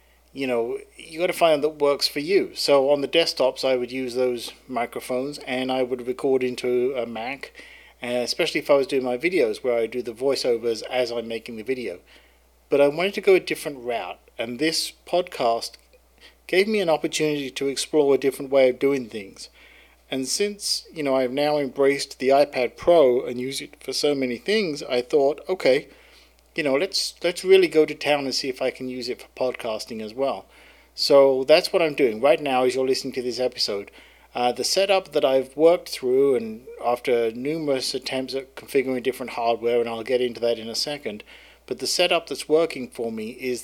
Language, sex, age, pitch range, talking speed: English, male, 40-59, 125-150 Hz, 205 wpm